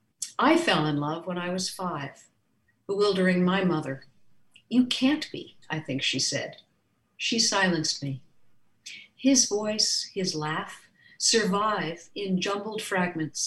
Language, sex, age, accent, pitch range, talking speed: English, female, 60-79, American, 150-210 Hz, 130 wpm